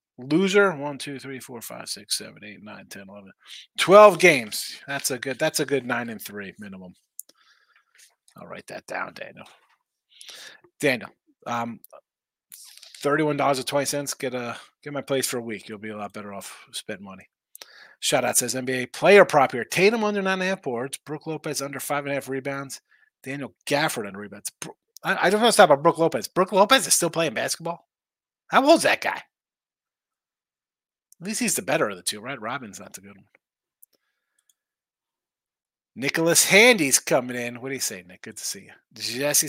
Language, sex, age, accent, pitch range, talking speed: English, male, 30-49, American, 125-170 Hz, 185 wpm